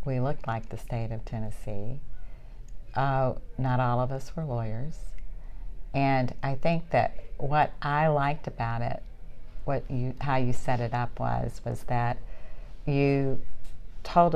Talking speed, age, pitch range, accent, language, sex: 145 wpm, 50-69, 120-140 Hz, American, English, female